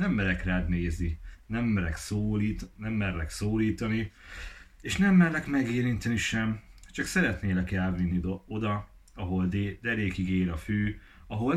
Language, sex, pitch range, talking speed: Hungarian, male, 90-115 Hz, 140 wpm